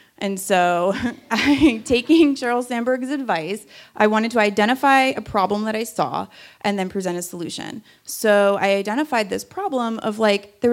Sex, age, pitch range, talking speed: female, 30-49, 195-240 Hz, 155 wpm